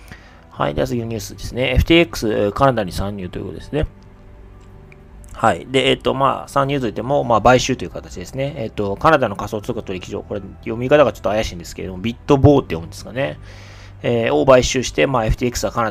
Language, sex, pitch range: Japanese, male, 95-130 Hz